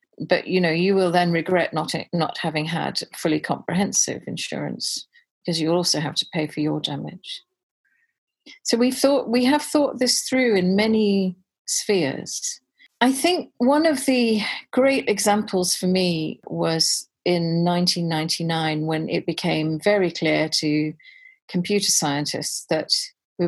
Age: 40-59